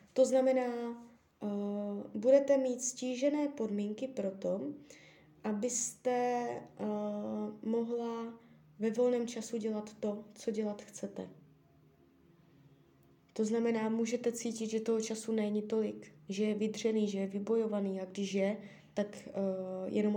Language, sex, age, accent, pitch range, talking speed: Czech, female, 20-39, native, 205-245 Hz, 120 wpm